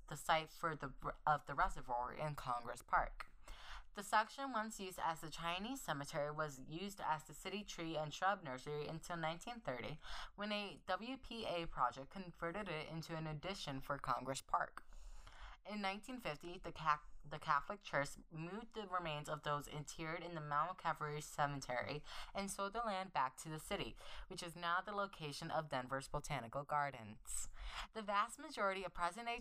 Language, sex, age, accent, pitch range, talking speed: English, female, 20-39, American, 150-205 Hz, 165 wpm